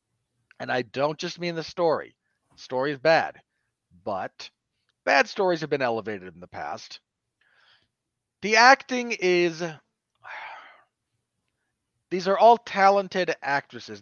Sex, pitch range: male, 120-170 Hz